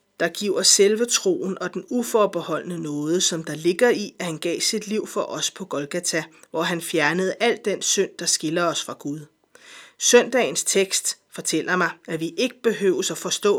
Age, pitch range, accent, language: 30-49, 165-210 Hz, native, Danish